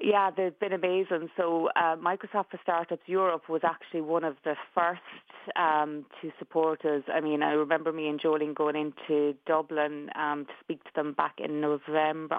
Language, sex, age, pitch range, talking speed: English, female, 30-49, 150-170 Hz, 185 wpm